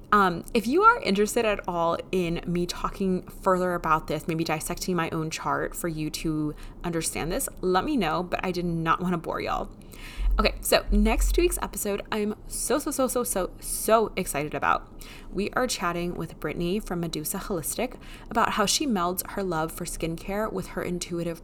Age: 20-39